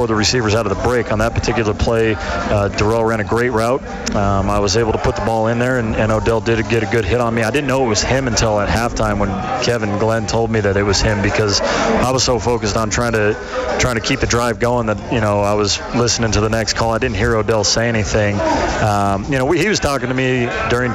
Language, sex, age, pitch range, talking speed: English, male, 30-49, 105-120 Hz, 270 wpm